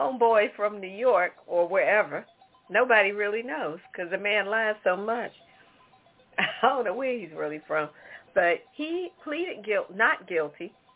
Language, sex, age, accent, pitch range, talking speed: English, female, 50-69, American, 195-245 Hz, 155 wpm